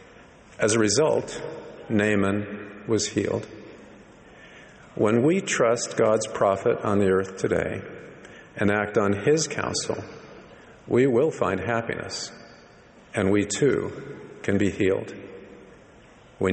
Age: 50-69